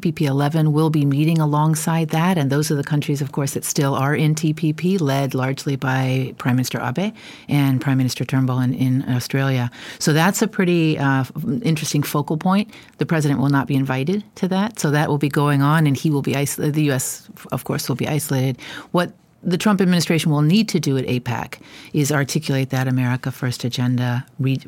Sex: female